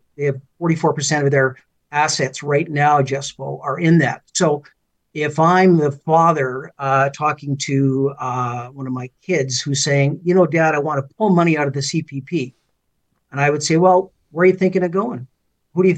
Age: 50-69